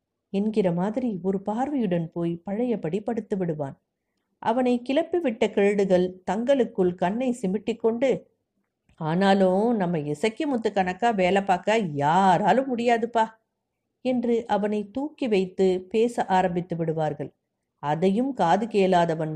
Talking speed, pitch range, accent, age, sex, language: 100 wpm, 180-230 Hz, native, 50-69, female, Tamil